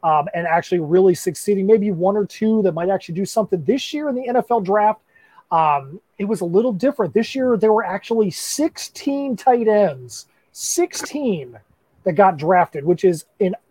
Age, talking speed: 30-49, 180 wpm